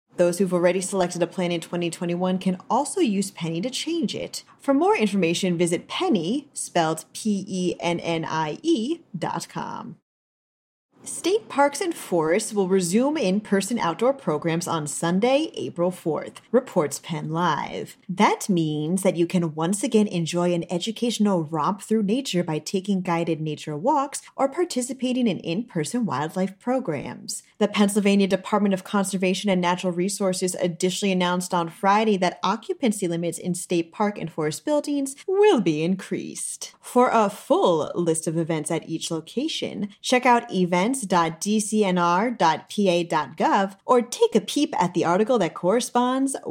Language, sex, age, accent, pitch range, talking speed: English, female, 30-49, American, 175-235 Hz, 145 wpm